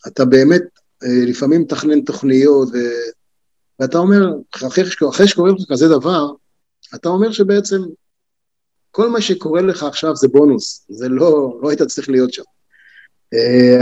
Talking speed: 125 wpm